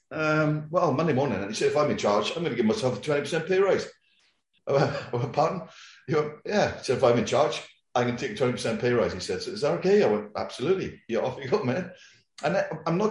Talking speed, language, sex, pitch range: 230 wpm, English, male, 130-195 Hz